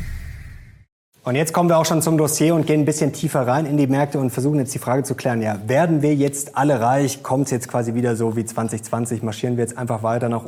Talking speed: 250 wpm